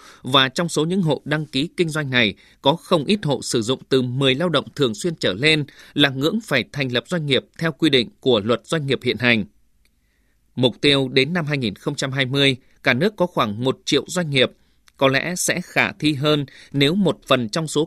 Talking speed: 215 wpm